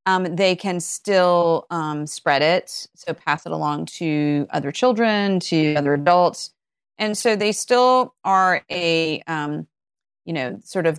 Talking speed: 155 wpm